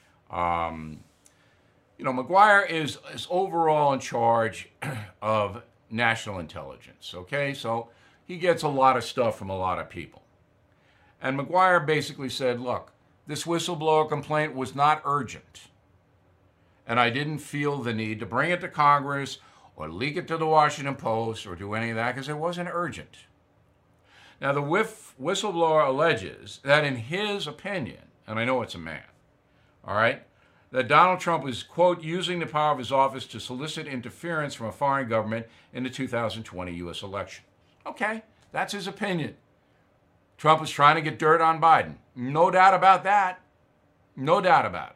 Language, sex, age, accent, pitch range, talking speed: English, male, 60-79, American, 115-160 Hz, 165 wpm